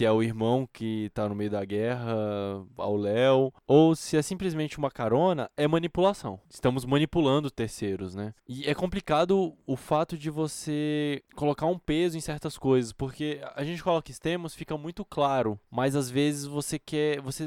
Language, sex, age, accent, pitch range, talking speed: Portuguese, male, 10-29, Brazilian, 120-160 Hz, 175 wpm